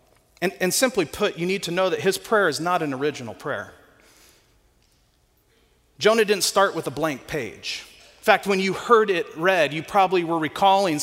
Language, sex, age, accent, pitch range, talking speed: English, male, 40-59, American, 165-215 Hz, 185 wpm